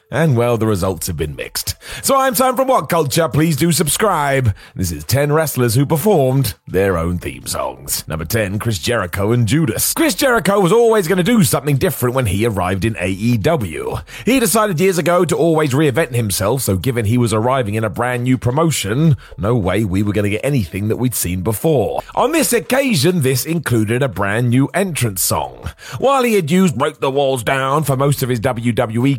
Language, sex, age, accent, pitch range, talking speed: English, male, 30-49, British, 120-165 Hz, 200 wpm